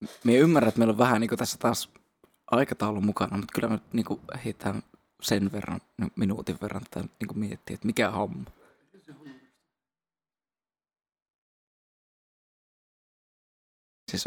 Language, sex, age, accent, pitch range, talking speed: Finnish, male, 20-39, native, 115-130 Hz, 125 wpm